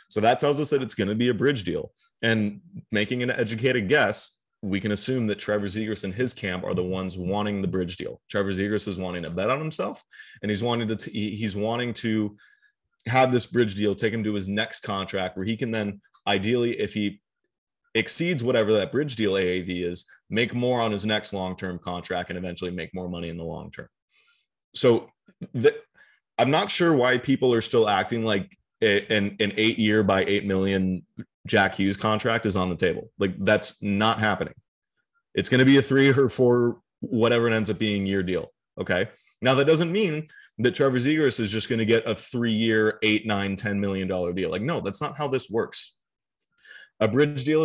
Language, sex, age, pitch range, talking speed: English, male, 20-39, 100-130 Hz, 200 wpm